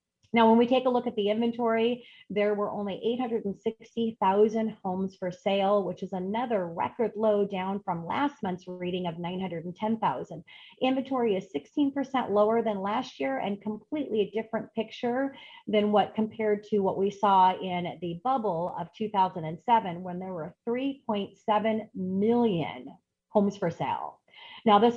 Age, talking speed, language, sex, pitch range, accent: 30-49, 150 wpm, English, female, 175-220 Hz, American